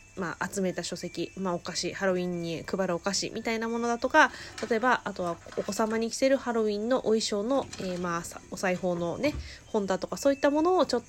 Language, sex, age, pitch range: Japanese, female, 20-39, 190-255 Hz